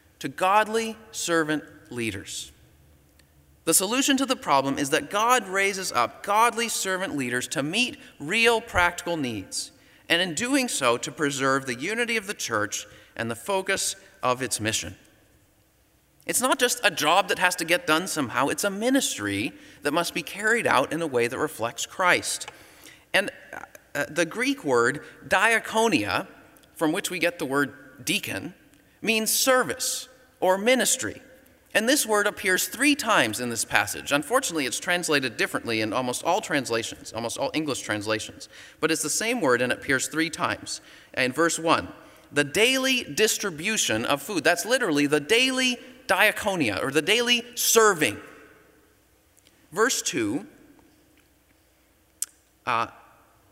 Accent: American